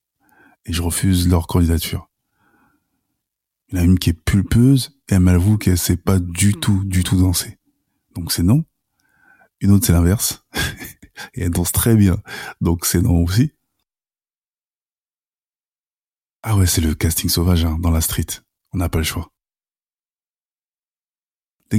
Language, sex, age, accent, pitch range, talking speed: French, male, 20-39, French, 85-105 Hz, 155 wpm